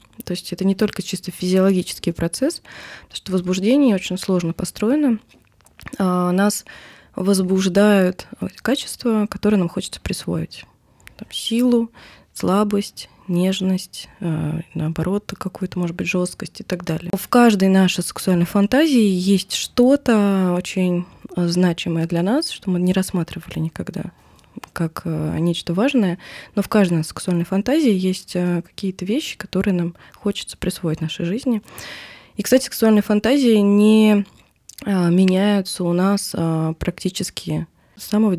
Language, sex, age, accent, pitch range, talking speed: Russian, female, 20-39, native, 175-210 Hz, 120 wpm